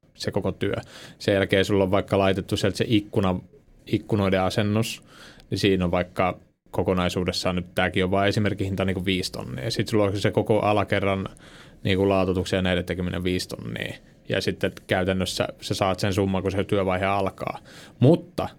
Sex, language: male, Finnish